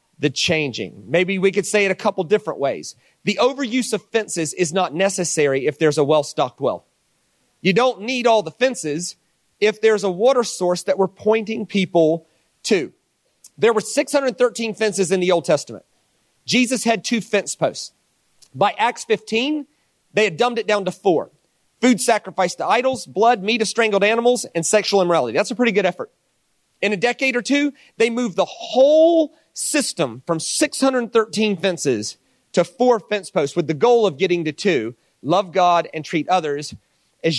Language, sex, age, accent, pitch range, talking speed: English, male, 40-59, American, 175-240 Hz, 175 wpm